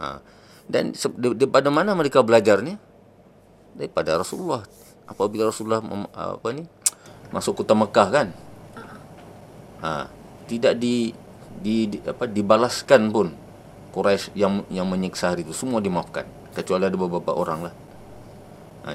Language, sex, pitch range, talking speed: Malay, male, 95-115 Hz, 120 wpm